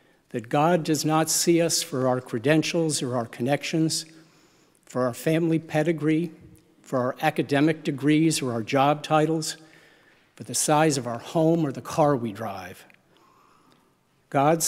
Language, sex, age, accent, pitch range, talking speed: English, male, 60-79, American, 130-160 Hz, 145 wpm